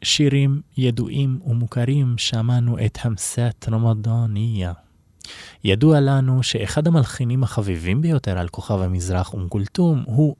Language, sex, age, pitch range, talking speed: Hebrew, male, 20-39, 95-130 Hz, 110 wpm